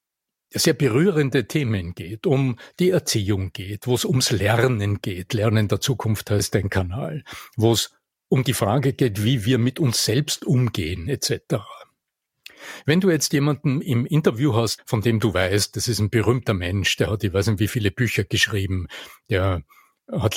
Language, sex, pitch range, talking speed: German, male, 105-135 Hz, 175 wpm